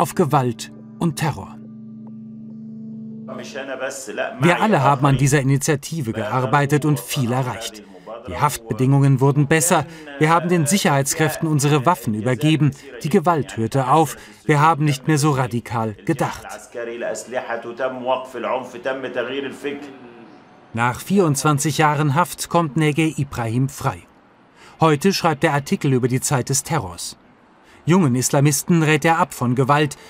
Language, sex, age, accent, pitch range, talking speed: German, male, 40-59, German, 115-155 Hz, 120 wpm